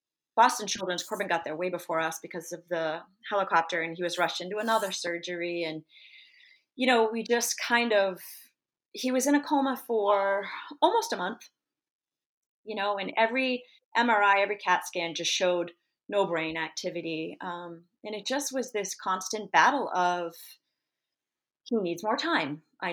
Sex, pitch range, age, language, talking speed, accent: female, 170-225 Hz, 30-49, English, 160 wpm, American